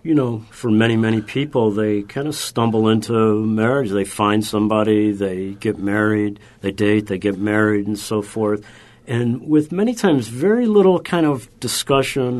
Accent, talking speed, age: American, 170 wpm, 50-69